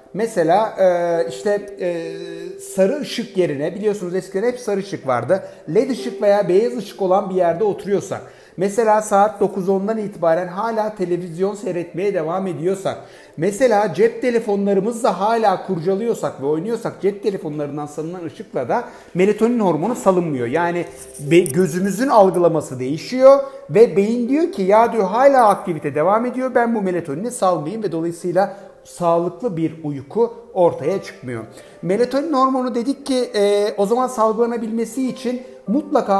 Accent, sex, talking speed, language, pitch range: native, male, 135 wpm, Turkish, 165-215 Hz